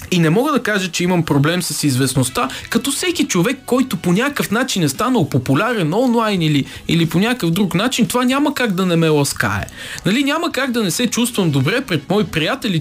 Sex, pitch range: male, 145-215 Hz